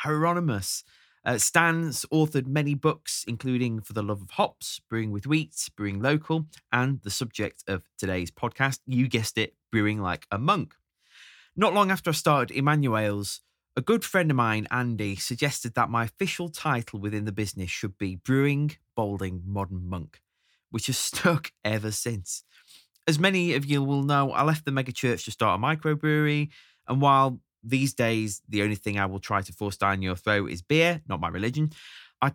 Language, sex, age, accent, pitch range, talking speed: English, male, 20-39, British, 100-145 Hz, 180 wpm